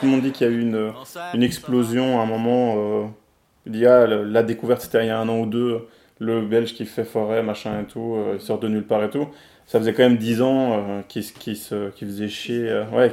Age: 20-39